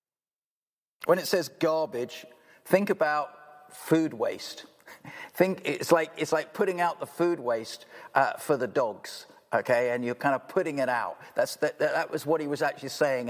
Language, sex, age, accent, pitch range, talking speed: English, male, 50-69, British, 135-185 Hz, 175 wpm